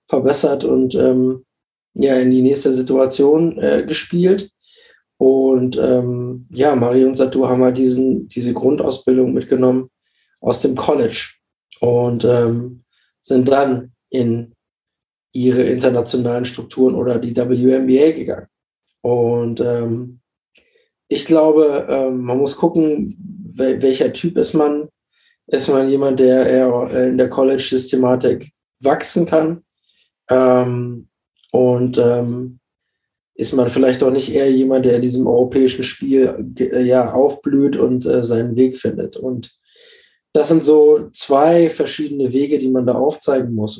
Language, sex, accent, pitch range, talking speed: German, male, German, 125-145 Hz, 130 wpm